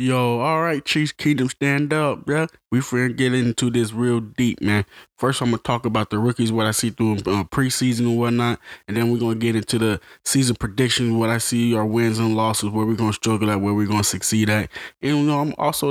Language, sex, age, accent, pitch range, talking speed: English, male, 20-39, American, 110-135 Hz, 235 wpm